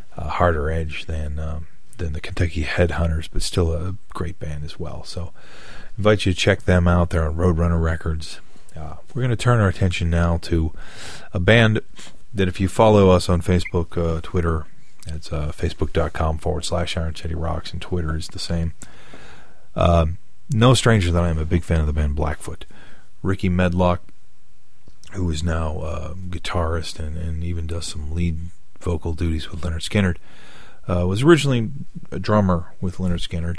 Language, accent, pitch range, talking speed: English, American, 80-90 Hz, 185 wpm